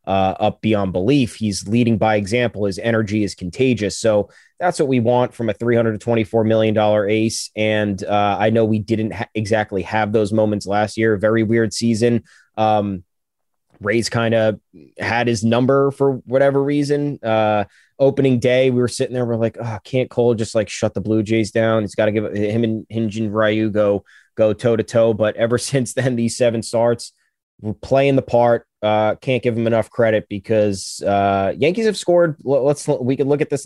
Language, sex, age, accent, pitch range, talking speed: English, male, 20-39, American, 105-125 Hz, 195 wpm